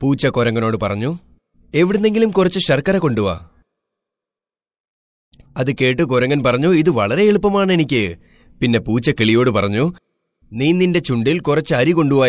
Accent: native